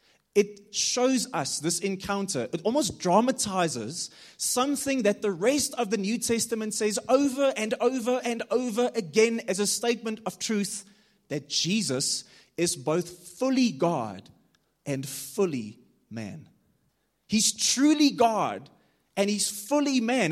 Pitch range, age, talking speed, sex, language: 185-235 Hz, 20-39, 130 wpm, male, English